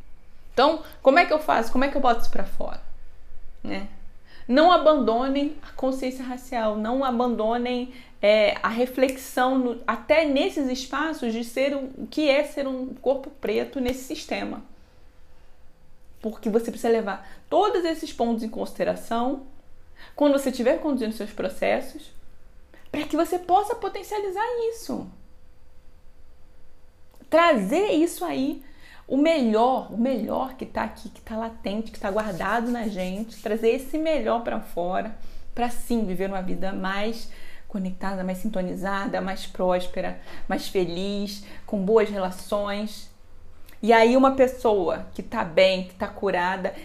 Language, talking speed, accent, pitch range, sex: Portuguese, 140 wpm, Brazilian, 200-265 Hz, female